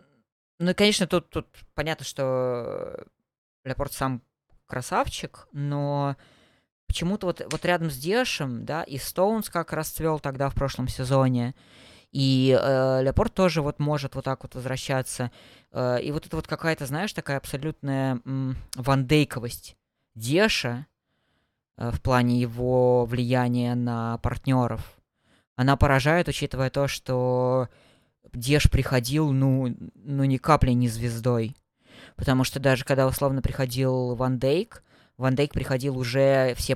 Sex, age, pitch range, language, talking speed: female, 20-39, 120-140 Hz, Russian, 125 wpm